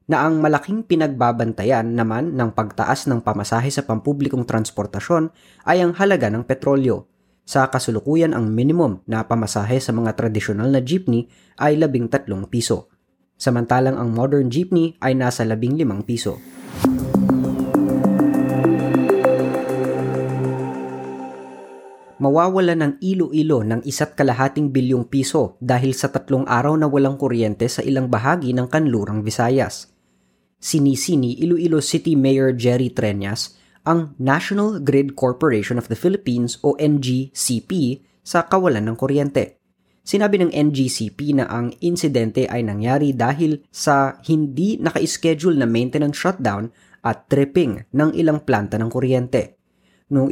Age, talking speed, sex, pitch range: 20-39, 125 wpm, female, 115-145 Hz